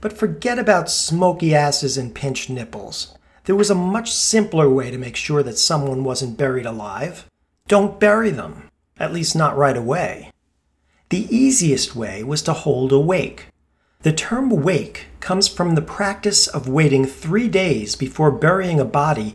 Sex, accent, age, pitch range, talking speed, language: male, American, 40-59, 130-190 Hz, 165 wpm, English